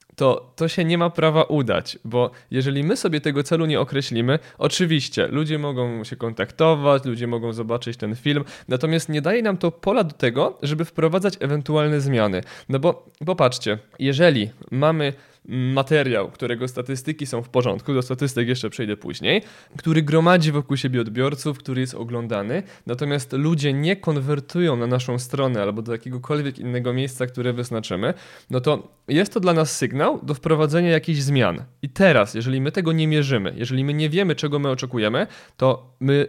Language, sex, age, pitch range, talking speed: Polish, male, 20-39, 125-160 Hz, 170 wpm